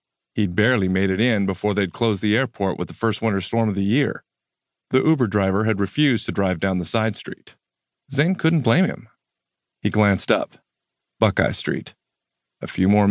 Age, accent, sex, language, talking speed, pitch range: 40-59, American, male, English, 190 wpm, 100-135 Hz